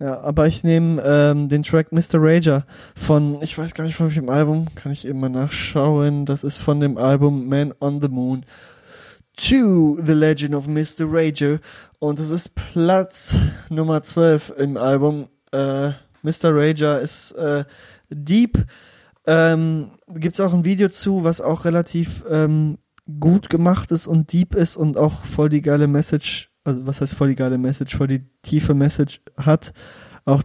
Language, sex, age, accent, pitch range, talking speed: German, male, 20-39, German, 135-160 Hz, 170 wpm